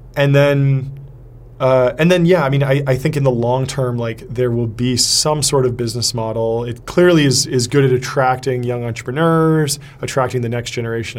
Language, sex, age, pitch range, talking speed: English, male, 20-39, 120-140 Hz, 200 wpm